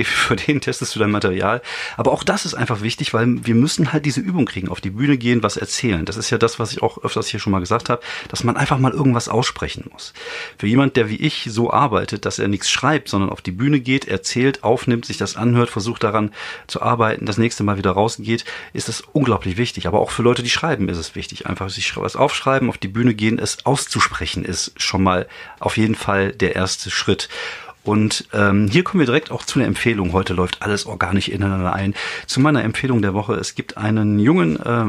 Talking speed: 230 wpm